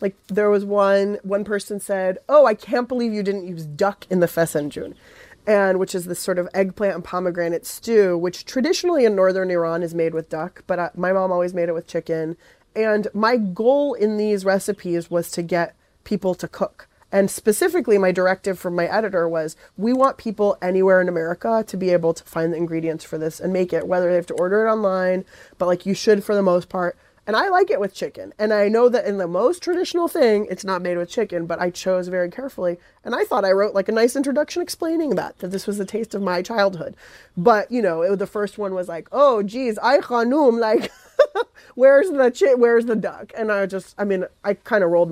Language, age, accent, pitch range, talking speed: English, 20-39, American, 175-215 Hz, 225 wpm